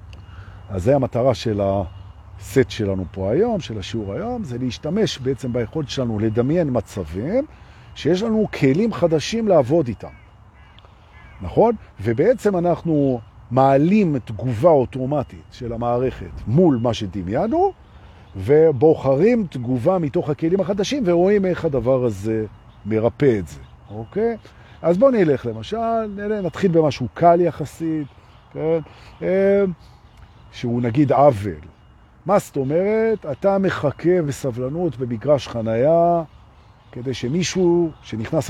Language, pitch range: Hebrew, 110-170 Hz